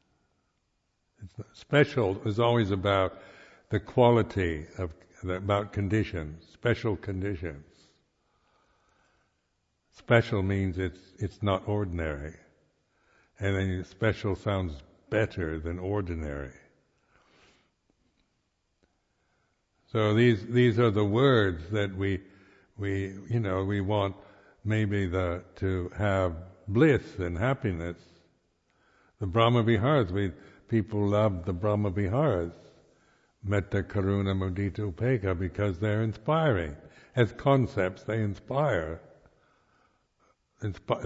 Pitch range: 95-110 Hz